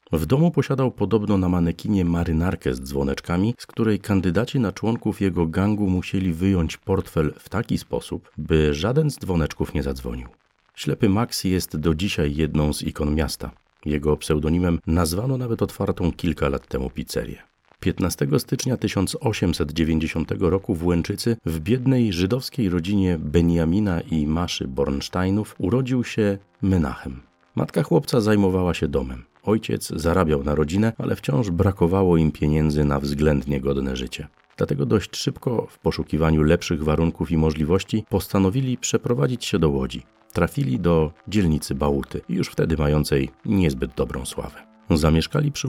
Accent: native